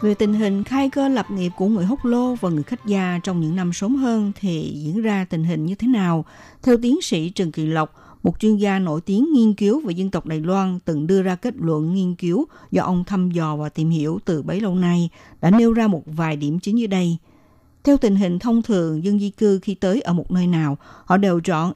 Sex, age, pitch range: female, 60-79, 165-220 Hz